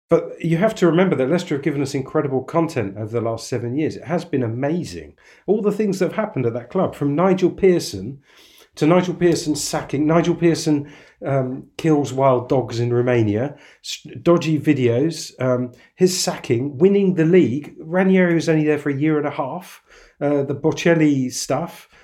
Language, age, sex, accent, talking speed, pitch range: English, 40-59, male, British, 185 wpm, 120-170 Hz